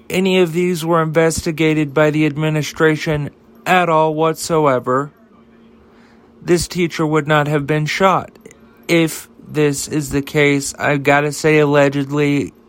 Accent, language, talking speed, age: American, English, 130 wpm, 40-59